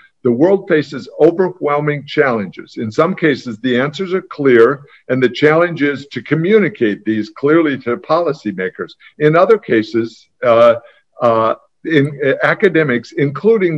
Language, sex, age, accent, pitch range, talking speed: English, male, 50-69, American, 120-160 Hz, 130 wpm